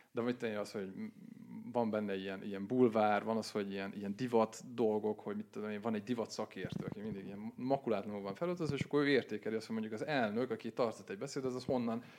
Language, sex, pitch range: Hungarian, male, 105-140 Hz